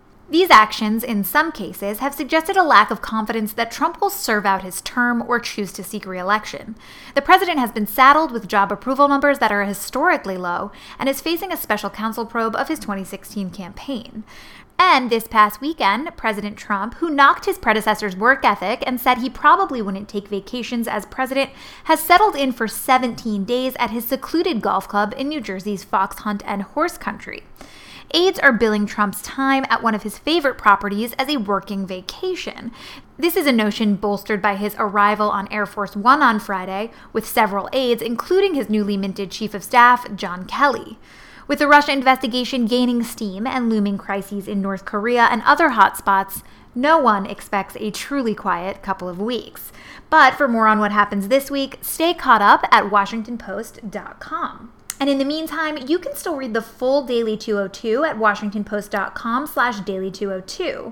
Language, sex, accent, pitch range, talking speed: English, female, American, 205-270 Hz, 180 wpm